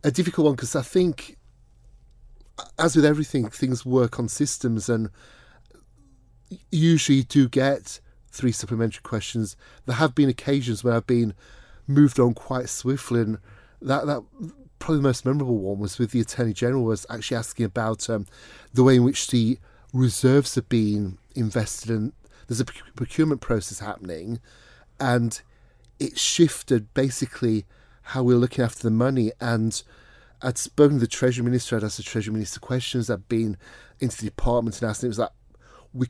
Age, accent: 30-49, British